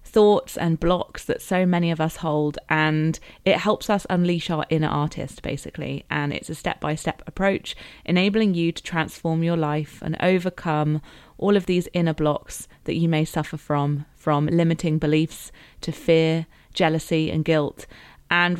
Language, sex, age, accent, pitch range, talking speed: English, female, 30-49, British, 155-185 Hz, 160 wpm